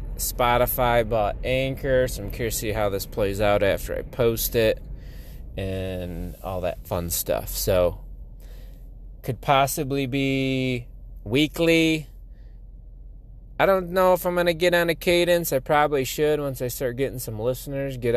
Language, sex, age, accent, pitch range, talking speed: English, male, 20-39, American, 105-145 Hz, 155 wpm